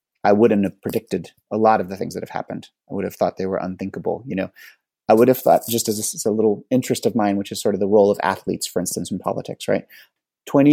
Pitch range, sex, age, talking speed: 105-125 Hz, male, 30-49, 270 wpm